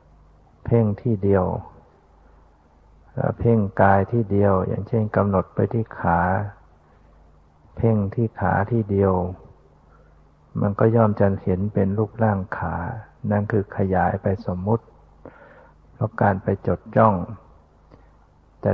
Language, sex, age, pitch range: Thai, male, 60-79, 80-110 Hz